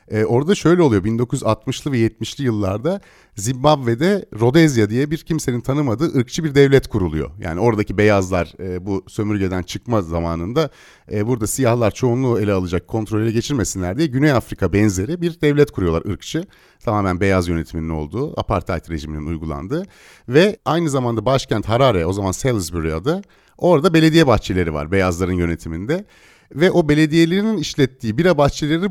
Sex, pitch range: male, 105-155 Hz